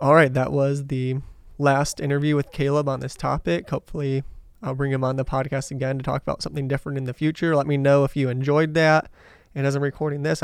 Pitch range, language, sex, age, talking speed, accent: 125-145 Hz, English, male, 20-39, 230 wpm, American